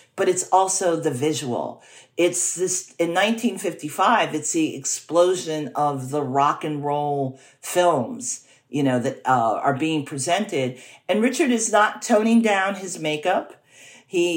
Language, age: English, 50-69